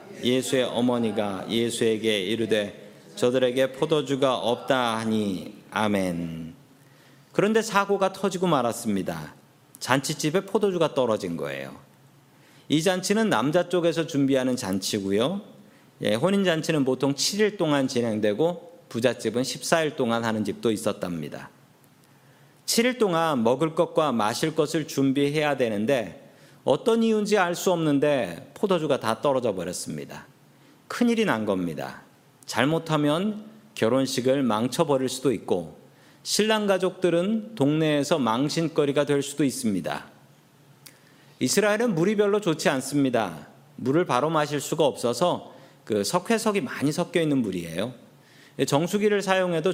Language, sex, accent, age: Korean, male, native, 40-59